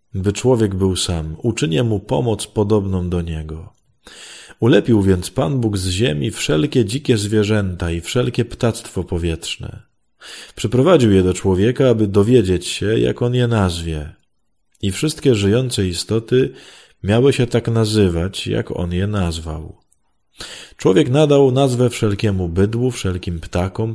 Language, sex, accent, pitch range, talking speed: Polish, male, native, 90-120 Hz, 135 wpm